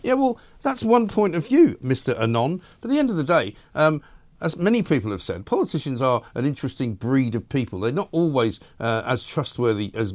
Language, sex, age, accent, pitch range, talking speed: English, male, 50-69, British, 110-145 Hz, 215 wpm